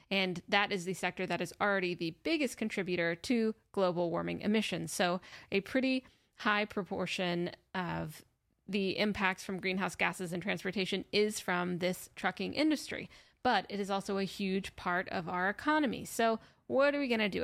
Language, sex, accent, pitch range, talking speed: English, female, American, 185-230 Hz, 170 wpm